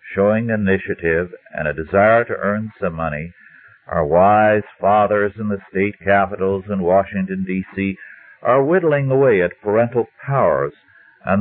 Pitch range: 90-115 Hz